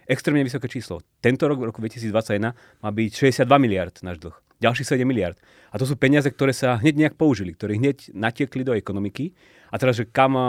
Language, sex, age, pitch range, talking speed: Slovak, male, 30-49, 105-135 Hz, 190 wpm